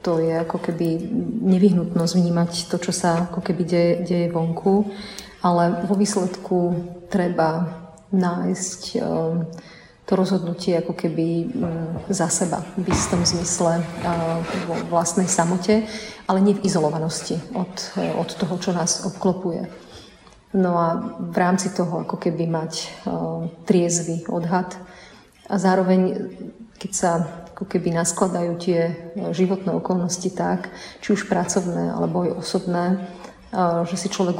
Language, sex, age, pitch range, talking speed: Slovak, female, 30-49, 170-190 Hz, 120 wpm